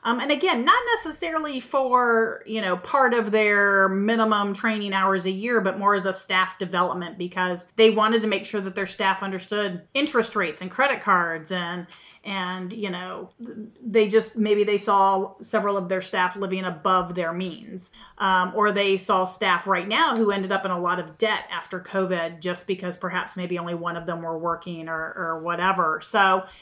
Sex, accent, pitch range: female, American, 185-230 Hz